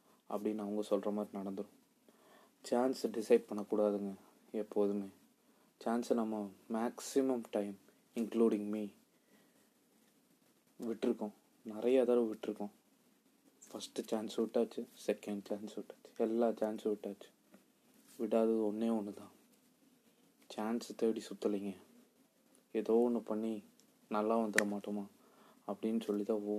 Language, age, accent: Tamil, 20-39, native